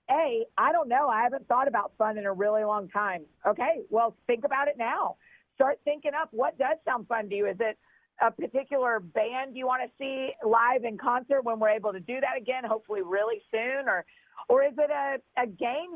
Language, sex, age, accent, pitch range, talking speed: English, female, 40-59, American, 220-275 Hz, 220 wpm